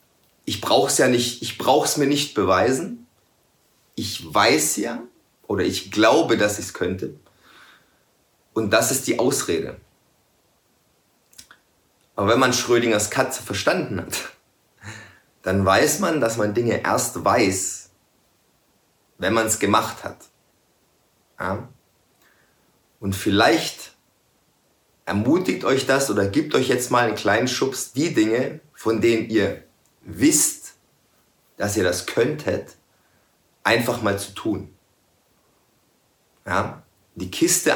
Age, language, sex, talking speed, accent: 30-49, German, male, 115 wpm, German